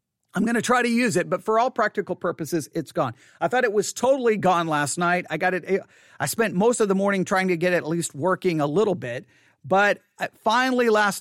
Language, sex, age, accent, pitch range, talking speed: English, male, 40-59, American, 140-180 Hz, 235 wpm